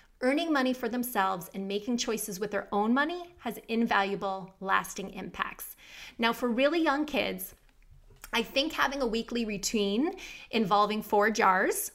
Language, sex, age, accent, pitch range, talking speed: English, female, 20-39, American, 205-255 Hz, 145 wpm